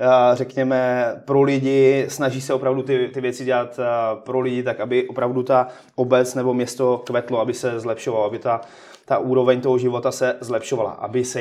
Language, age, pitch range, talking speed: Czech, 20-39, 125-140 Hz, 175 wpm